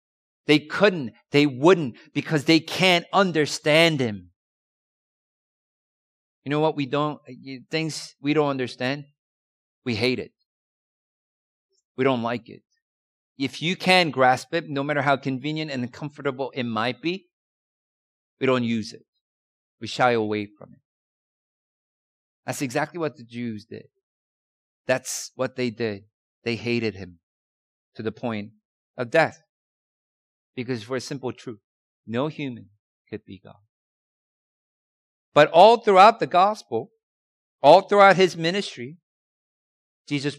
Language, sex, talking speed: English, male, 130 wpm